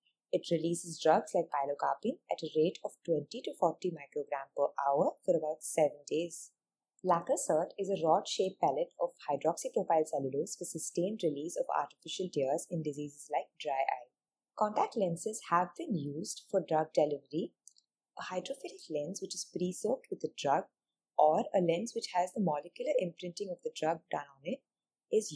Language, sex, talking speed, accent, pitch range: English, female, 165 wpm, Indian, 155-210 Hz